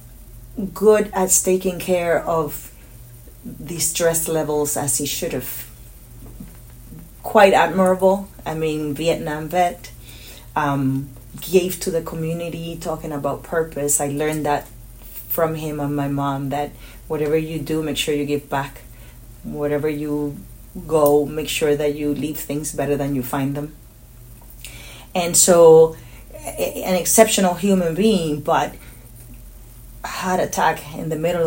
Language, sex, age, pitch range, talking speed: English, female, 30-49, 140-170 Hz, 130 wpm